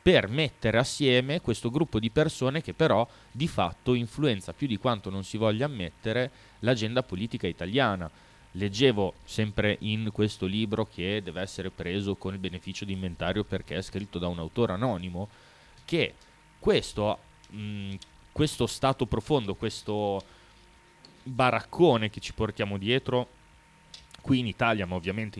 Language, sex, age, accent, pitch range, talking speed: Italian, male, 20-39, native, 95-130 Hz, 140 wpm